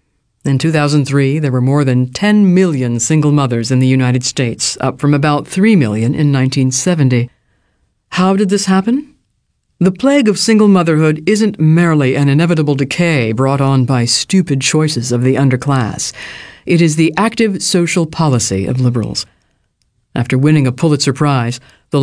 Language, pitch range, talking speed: English, 130-185 Hz, 155 wpm